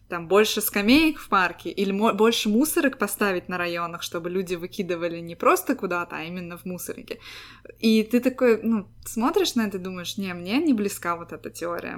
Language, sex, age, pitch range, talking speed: Russian, female, 20-39, 170-210 Hz, 185 wpm